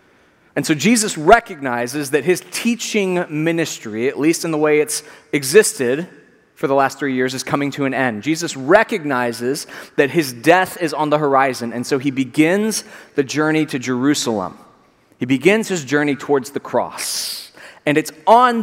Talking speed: 170 wpm